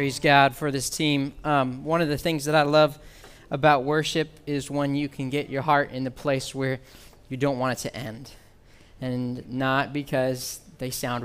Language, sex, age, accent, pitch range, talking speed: English, male, 20-39, American, 125-150 Hz, 190 wpm